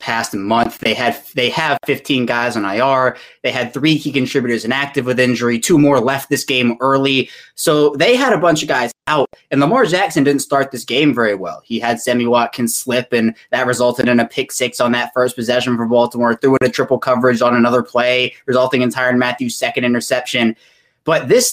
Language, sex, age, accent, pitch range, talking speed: English, male, 20-39, American, 125-155 Hz, 210 wpm